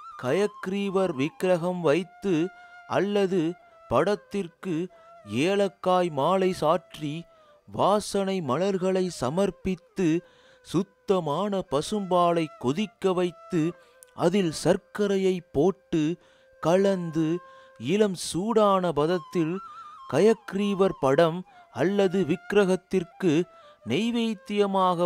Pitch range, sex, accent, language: 170-205 Hz, male, native, Tamil